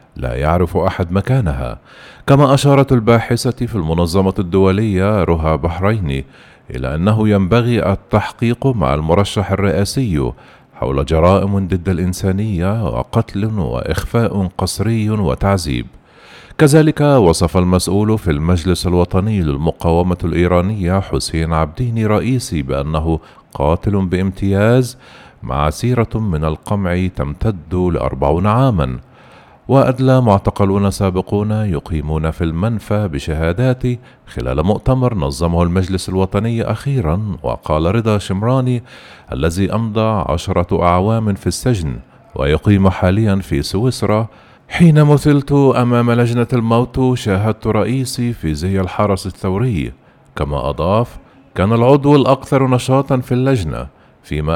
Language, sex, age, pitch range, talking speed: Arabic, male, 40-59, 85-120 Hz, 105 wpm